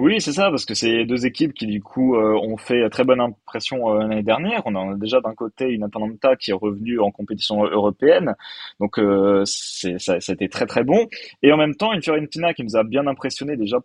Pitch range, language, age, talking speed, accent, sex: 105-150 Hz, French, 20-39, 230 wpm, French, male